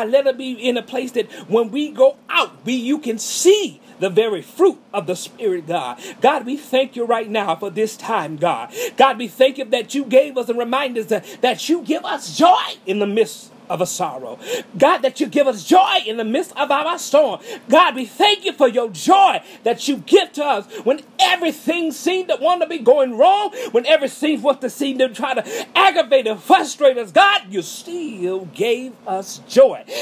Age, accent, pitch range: 40-59, American, 230-315 Hz